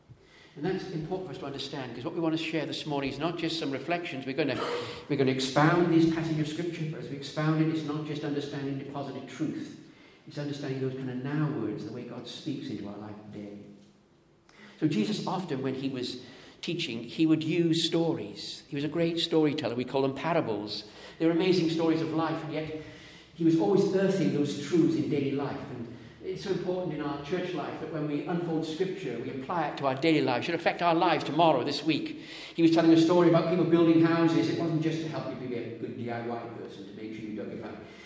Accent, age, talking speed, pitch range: British, 50-69, 235 wpm, 130-165 Hz